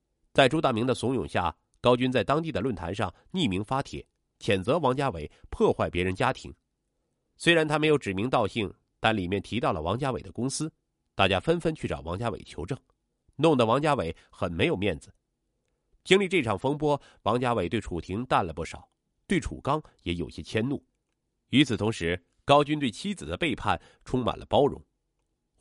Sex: male